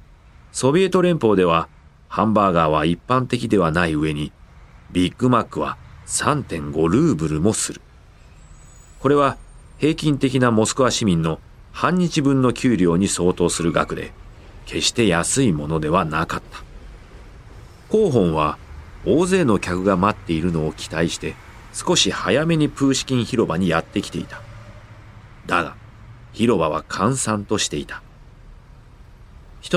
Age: 40-59